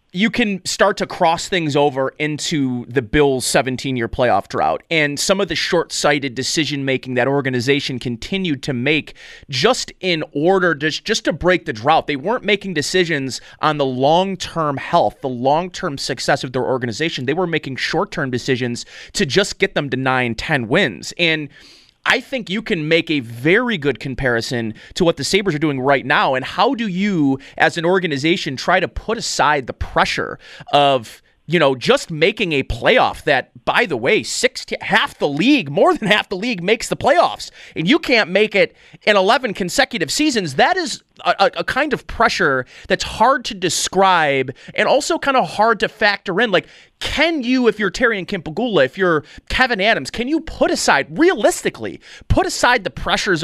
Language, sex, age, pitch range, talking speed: English, male, 30-49, 140-205 Hz, 180 wpm